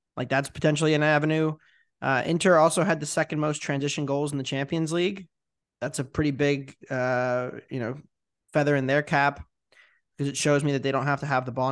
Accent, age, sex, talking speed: American, 20-39, male, 205 wpm